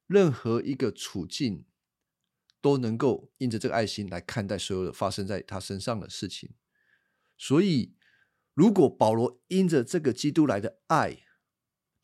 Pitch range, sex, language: 110-140 Hz, male, Chinese